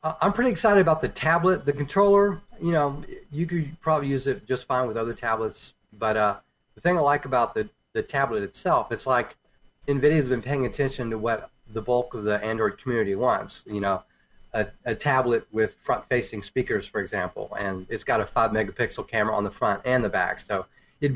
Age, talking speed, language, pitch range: 30-49, 200 wpm, English, 105-135 Hz